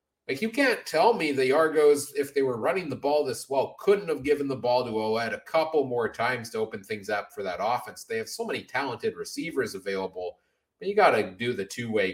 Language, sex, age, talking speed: English, male, 30-49, 230 wpm